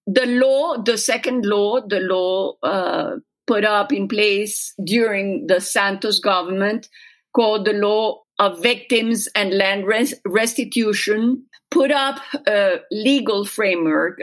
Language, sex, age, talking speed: English, female, 50-69, 120 wpm